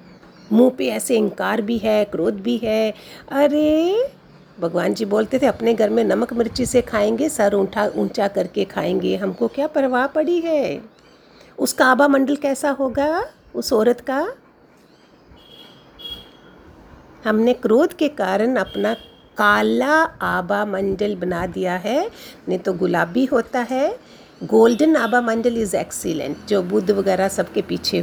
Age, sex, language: 50-69, female, Hindi